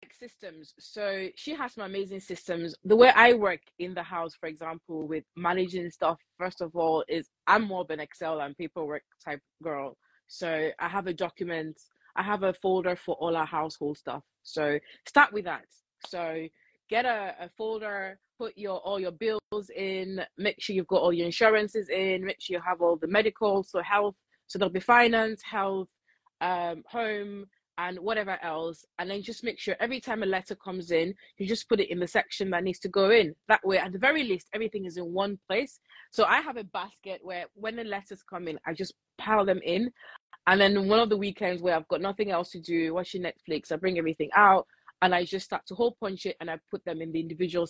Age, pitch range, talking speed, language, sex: 20-39, 170-210 Hz, 215 wpm, English, female